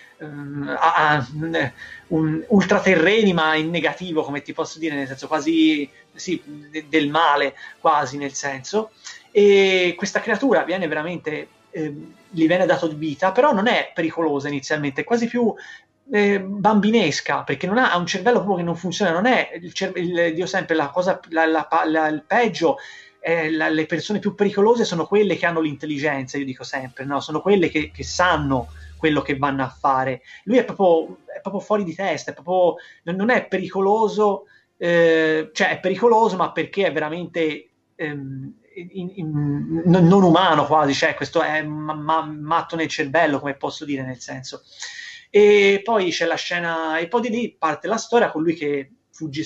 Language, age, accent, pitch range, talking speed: Italian, 30-49, native, 150-195 Hz, 180 wpm